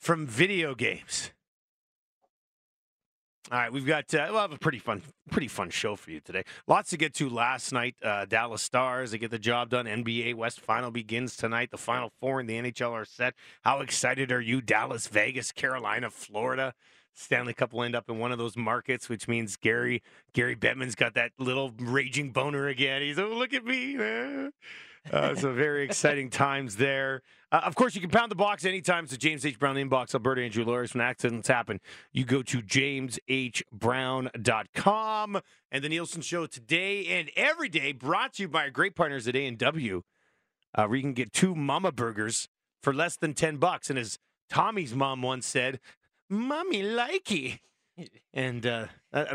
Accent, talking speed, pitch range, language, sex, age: American, 185 wpm, 120-165 Hz, English, male, 30-49